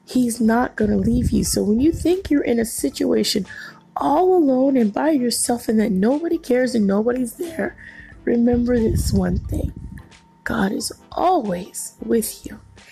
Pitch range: 200-260 Hz